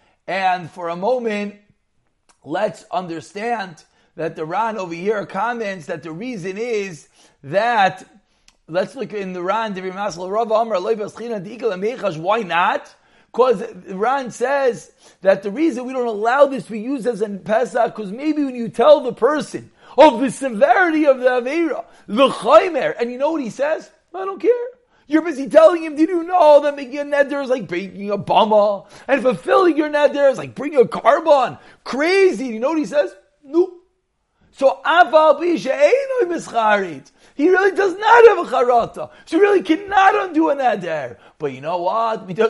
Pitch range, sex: 210-300 Hz, male